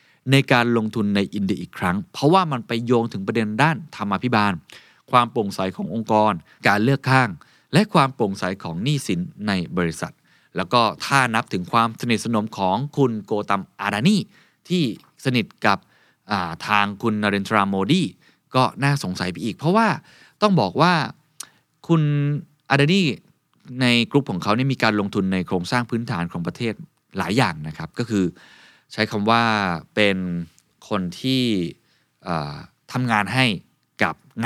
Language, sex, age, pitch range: Thai, male, 20-39, 100-140 Hz